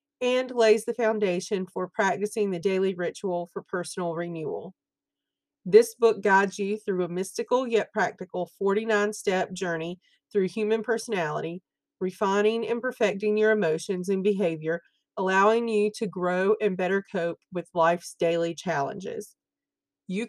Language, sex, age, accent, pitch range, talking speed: English, female, 40-59, American, 180-225 Hz, 135 wpm